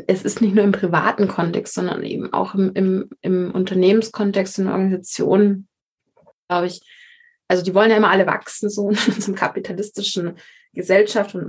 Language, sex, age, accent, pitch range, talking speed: German, female, 20-39, German, 185-220 Hz, 160 wpm